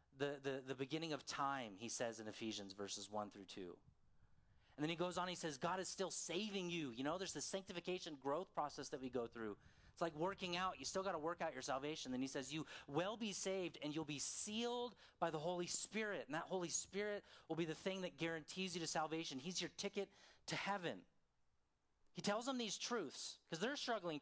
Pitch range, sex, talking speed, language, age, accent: 130-185 Hz, male, 225 wpm, English, 30-49, American